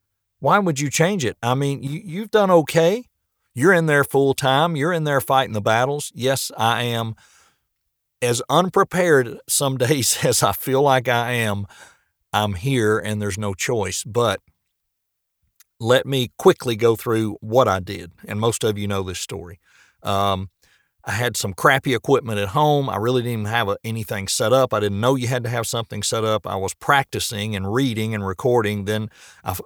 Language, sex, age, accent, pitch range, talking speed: English, male, 50-69, American, 100-130 Hz, 180 wpm